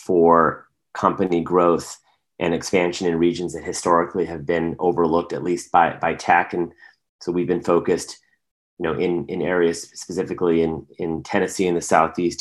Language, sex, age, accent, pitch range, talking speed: English, male, 30-49, American, 85-95 Hz, 165 wpm